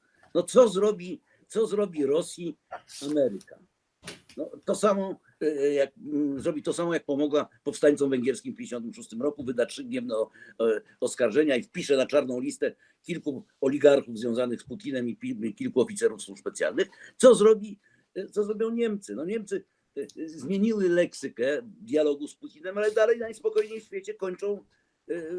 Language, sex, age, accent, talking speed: Polish, male, 50-69, native, 135 wpm